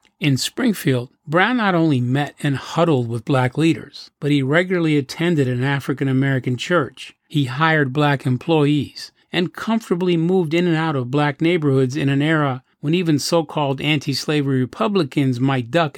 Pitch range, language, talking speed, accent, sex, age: 135-170 Hz, English, 155 wpm, American, male, 40-59